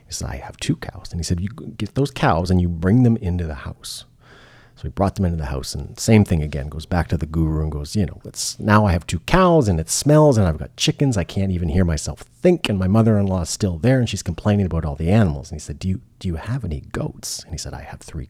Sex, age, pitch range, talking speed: male, 40-59, 85-110 Hz, 280 wpm